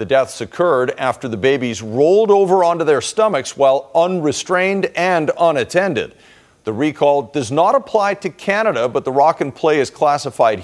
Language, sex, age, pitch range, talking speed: English, male, 50-69, 120-180 Hz, 165 wpm